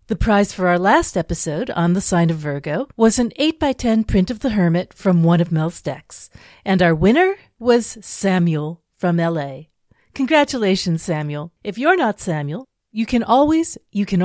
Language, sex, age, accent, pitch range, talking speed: English, female, 40-59, American, 160-230 Hz, 180 wpm